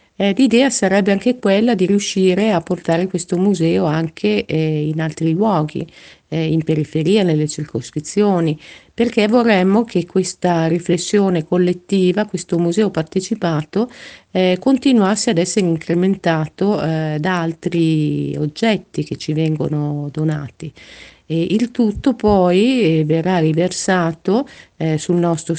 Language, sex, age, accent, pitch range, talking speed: Italian, female, 50-69, native, 160-200 Hz, 115 wpm